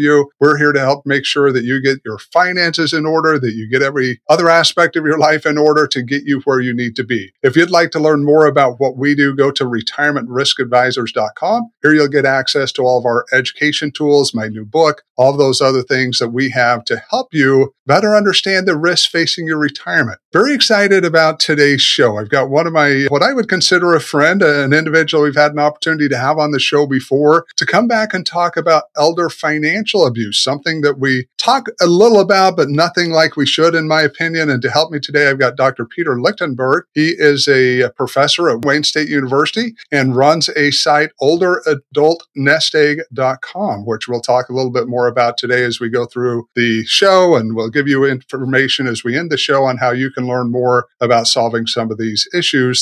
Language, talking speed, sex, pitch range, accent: English, 210 wpm, male, 125-160 Hz, American